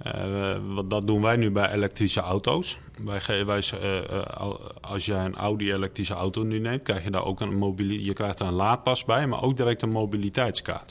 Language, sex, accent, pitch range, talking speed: Dutch, male, Dutch, 100-115 Hz, 185 wpm